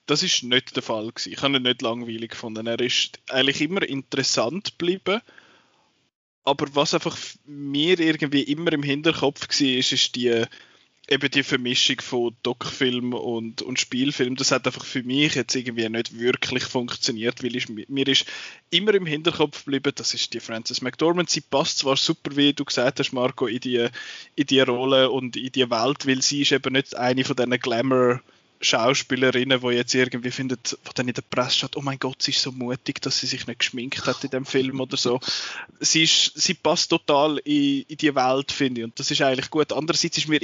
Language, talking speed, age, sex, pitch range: German, 200 wpm, 20-39, male, 125-145 Hz